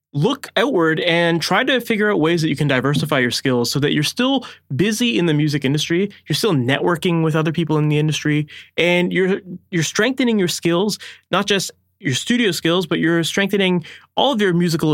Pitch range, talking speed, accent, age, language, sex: 145-185 Hz, 200 wpm, American, 20-39, English, male